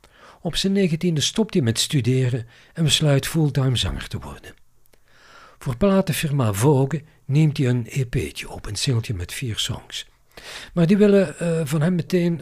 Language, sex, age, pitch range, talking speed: Dutch, male, 50-69, 115-155 Hz, 160 wpm